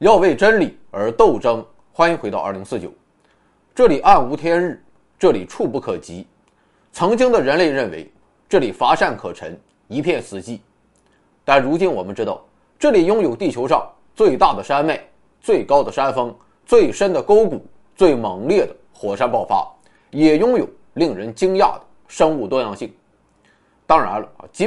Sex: male